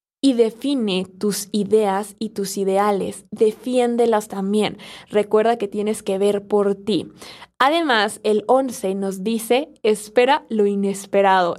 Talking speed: 125 wpm